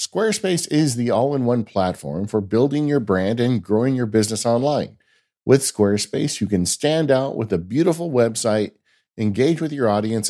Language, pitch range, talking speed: English, 105-140 Hz, 165 wpm